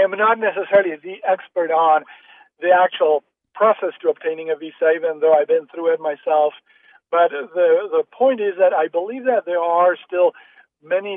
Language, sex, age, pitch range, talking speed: English, male, 50-69, 165-265 Hz, 185 wpm